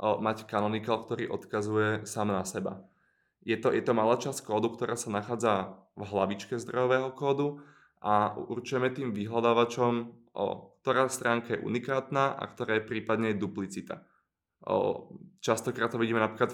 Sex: male